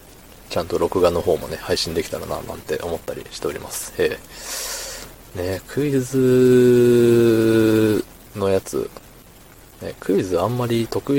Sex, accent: male, native